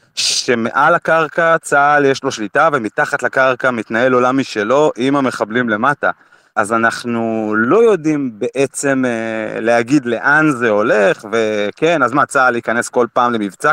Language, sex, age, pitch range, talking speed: Hebrew, male, 30-49, 120-165 Hz, 140 wpm